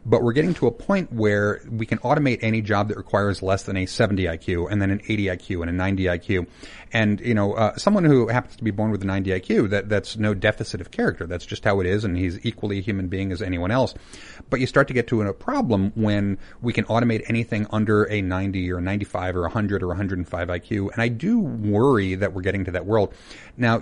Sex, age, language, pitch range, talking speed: male, 30-49, English, 95-115 Hz, 250 wpm